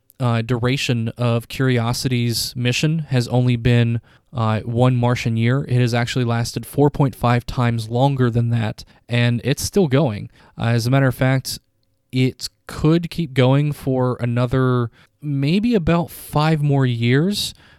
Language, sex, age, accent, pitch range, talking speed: English, male, 20-39, American, 115-130 Hz, 140 wpm